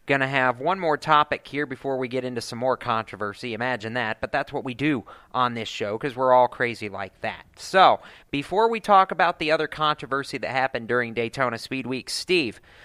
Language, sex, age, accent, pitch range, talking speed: English, male, 40-59, American, 130-165 Hz, 210 wpm